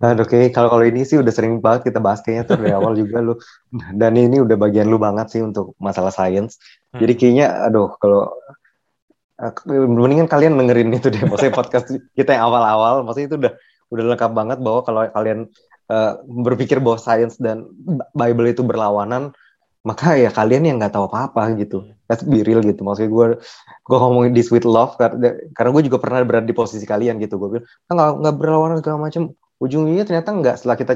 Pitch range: 110-125 Hz